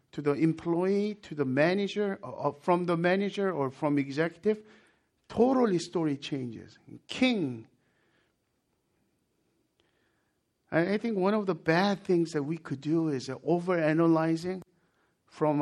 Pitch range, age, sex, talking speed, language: 130-175 Hz, 50-69, male, 120 wpm, English